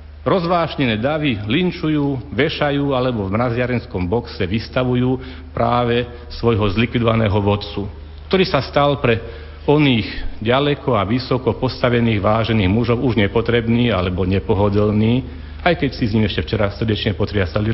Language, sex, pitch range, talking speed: Slovak, male, 95-130 Hz, 125 wpm